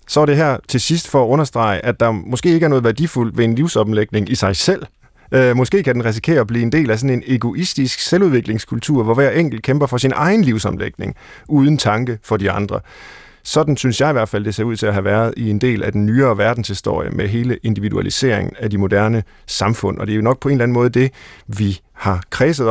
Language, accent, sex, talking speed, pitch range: Danish, native, male, 240 wpm, 105-135 Hz